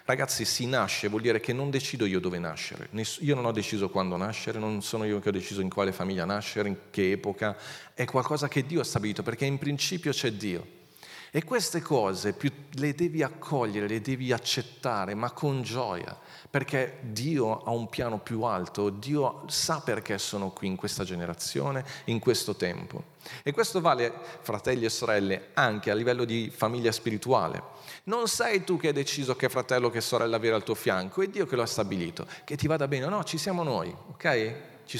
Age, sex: 40-59, male